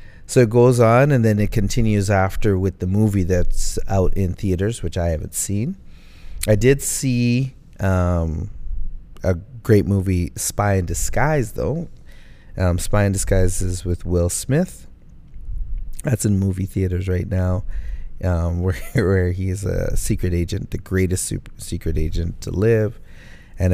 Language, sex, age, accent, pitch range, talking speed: English, male, 30-49, American, 85-100 Hz, 150 wpm